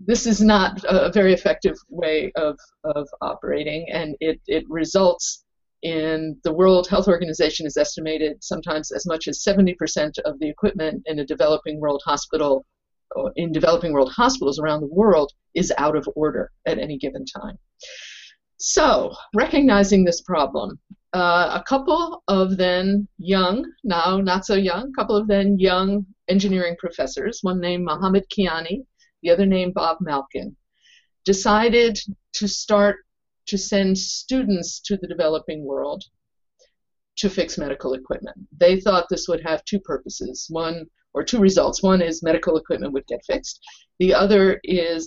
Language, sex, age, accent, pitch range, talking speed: English, female, 50-69, American, 155-200 Hz, 150 wpm